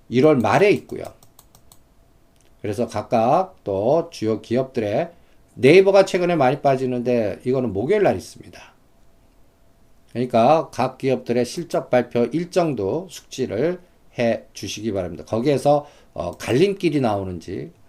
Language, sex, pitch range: Korean, male, 110-150 Hz